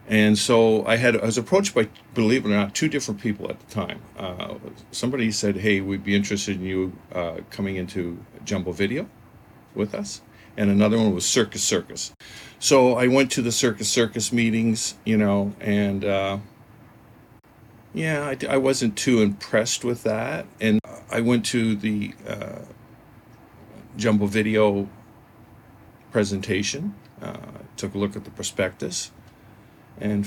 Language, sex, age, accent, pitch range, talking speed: English, male, 50-69, American, 100-115 Hz, 150 wpm